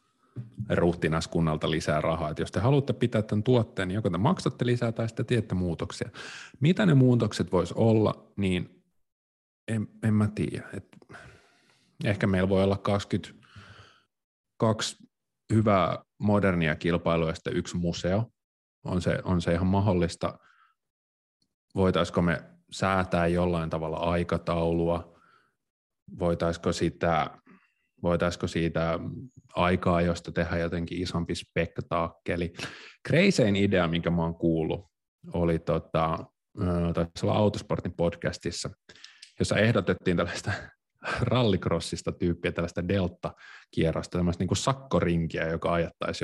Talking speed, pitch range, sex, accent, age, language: 110 wpm, 85-105 Hz, male, native, 30-49, Finnish